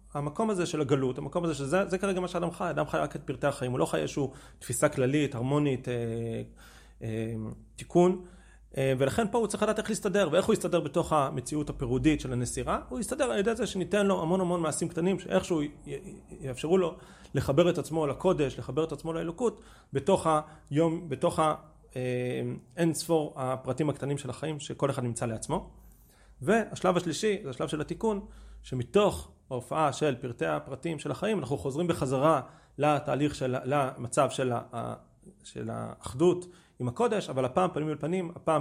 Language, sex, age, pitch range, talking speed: Hebrew, male, 30-49, 130-180 Hz, 170 wpm